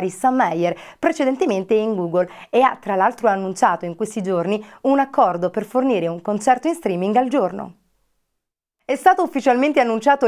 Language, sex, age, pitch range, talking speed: Italian, female, 30-49, 185-255 Hz, 160 wpm